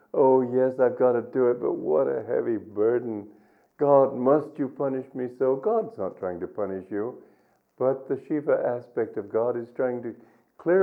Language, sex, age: English, male, 50-69